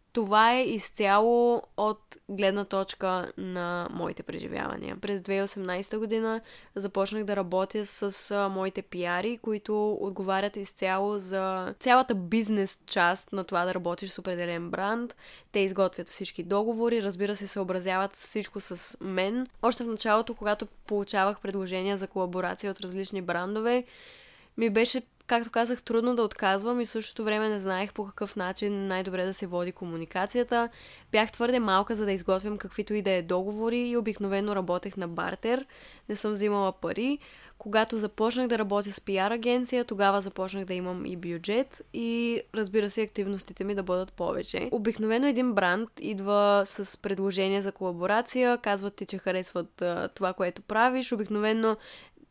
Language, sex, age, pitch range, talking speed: Bulgarian, female, 20-39, 190-225 Hz, 150 wpm